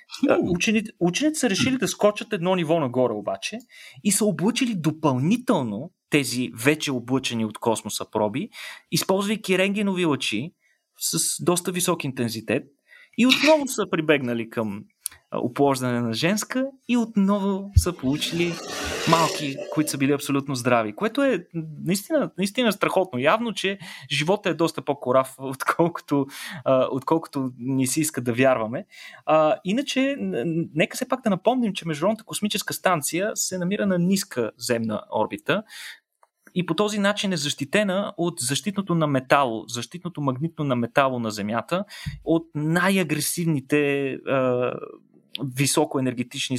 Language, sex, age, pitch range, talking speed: Bulgarian, male, 30-49, 130-190 Hz, 130 wpm